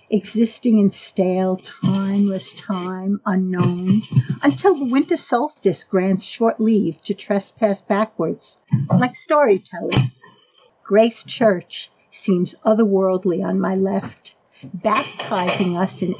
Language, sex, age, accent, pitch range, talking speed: English, female, 60-79, American, 185-225 Hz, 105 wpm